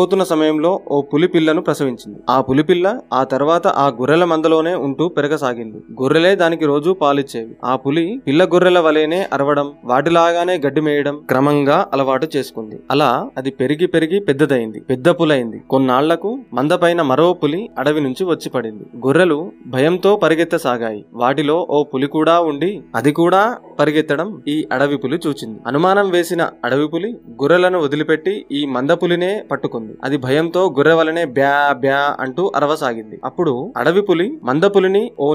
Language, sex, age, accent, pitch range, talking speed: Telugu, male, 30-49, native, 135-175 Hz, 140 wpm